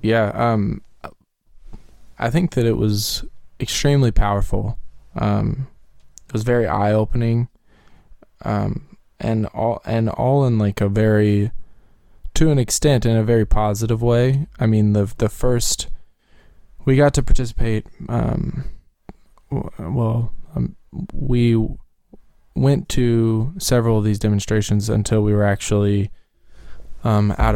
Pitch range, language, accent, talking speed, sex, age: 105-120 Hz, English, American, 120 wpm, male, 20-39